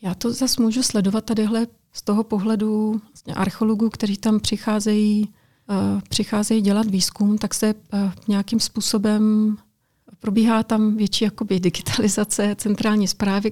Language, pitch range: Czech, 205-225 Hz